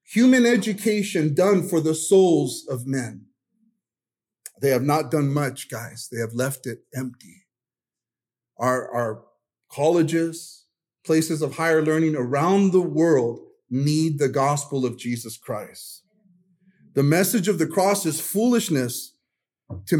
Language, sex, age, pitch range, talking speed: English, male, 40-59, 135-185 Hz, 130 wpm